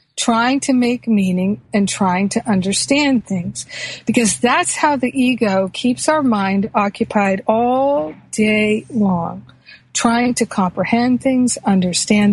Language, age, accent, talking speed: English, 50-69, American, 125 wpm